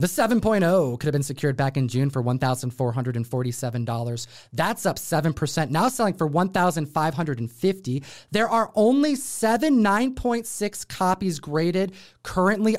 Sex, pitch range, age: male, 145-195 Hz, 30-49